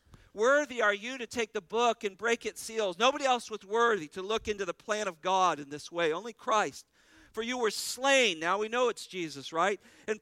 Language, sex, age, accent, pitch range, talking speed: English, male, 50-69, American, 175-235 Hz, 225 wpm